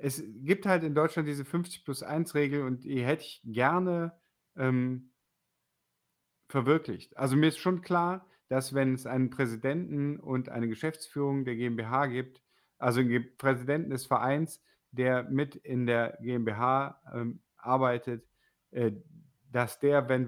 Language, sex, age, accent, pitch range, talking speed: German, male, 50-69, German, 120-145 Hz, 140 wpm